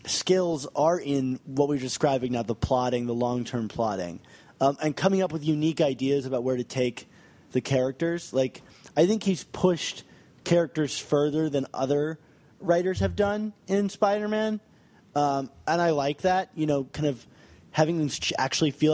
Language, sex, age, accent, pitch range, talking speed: English, male, 20-39, American, 130-170 Hz, 160 wpm